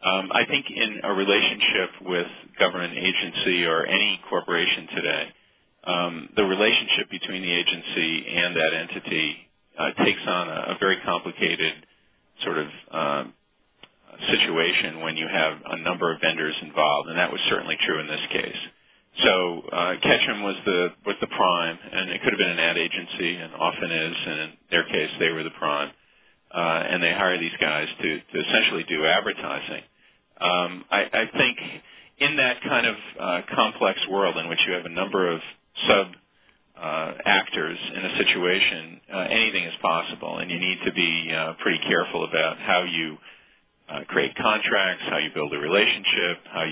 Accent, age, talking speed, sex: American, 40-59, 175 wpm, male